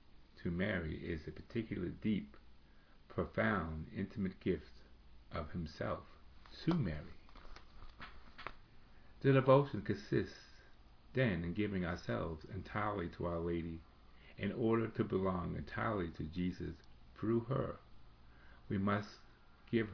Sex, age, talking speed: male, 50-69, 110 wpm